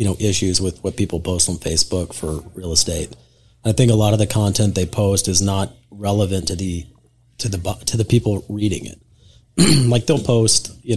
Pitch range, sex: 95-115 Hz, male